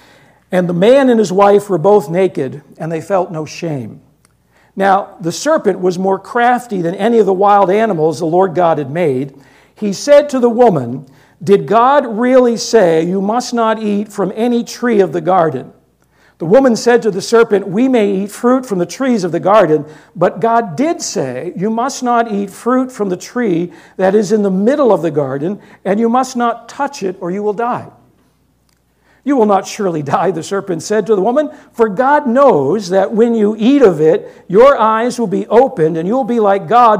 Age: 50-69